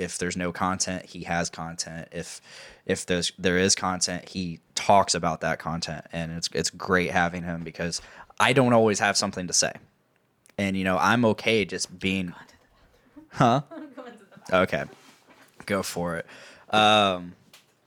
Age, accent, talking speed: 10-29, American, 155 wpm